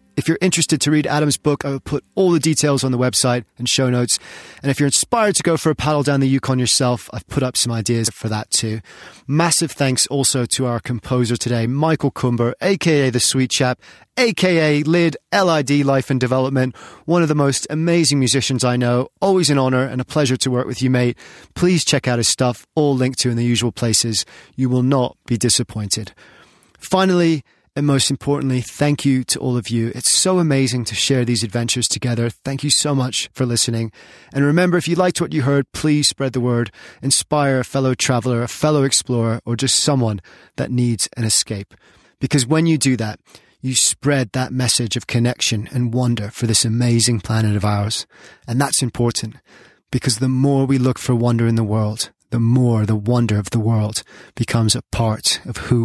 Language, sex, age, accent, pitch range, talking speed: English, male, 30-49, British, 120-145 Hz, 205 wpm